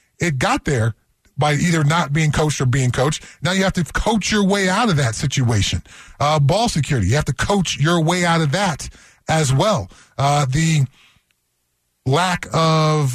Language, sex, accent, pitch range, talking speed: English, male, American, 145-185 Hz, 185 wpm